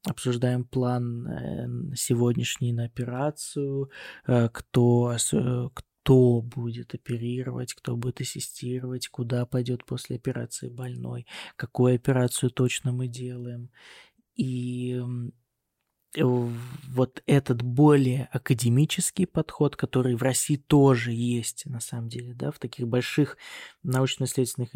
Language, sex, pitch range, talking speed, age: Russian, male, 120-135 Hz, 100 wpm, 20-39